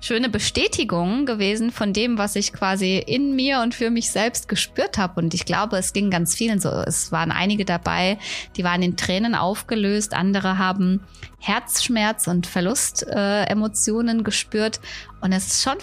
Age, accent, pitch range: 20-39, German, 175-225 Hz